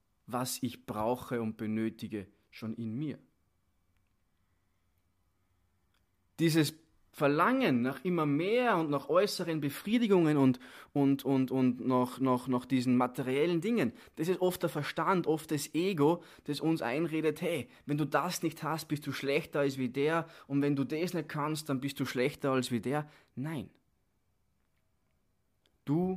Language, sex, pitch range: German, male, 110-155 Hz